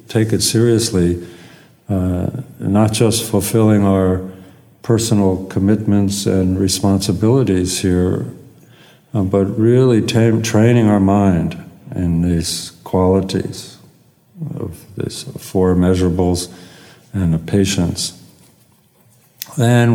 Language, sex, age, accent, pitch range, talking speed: English, male, 60-79, American, 90-110 Hz, 85 wpm